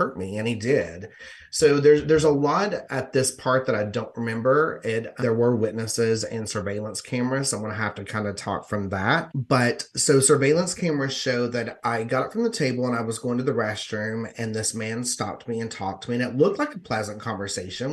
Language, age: English, 30-49